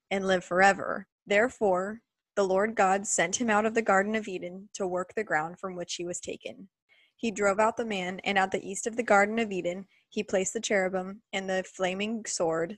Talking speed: 215 wpm